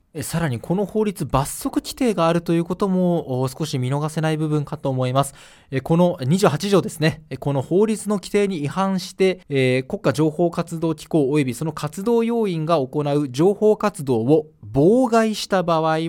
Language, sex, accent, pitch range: Japanese, male, native, 140-205 Hz